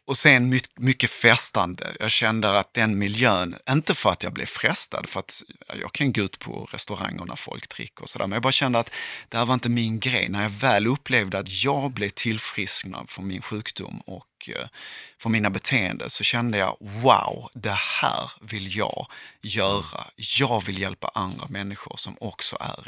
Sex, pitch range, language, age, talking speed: male, 100-125 Hz, Swedish, 30-49, 185 wpm